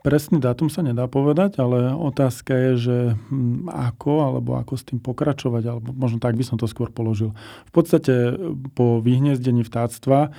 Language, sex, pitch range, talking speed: Slovak, male, 115-135 Hz, 160 wpm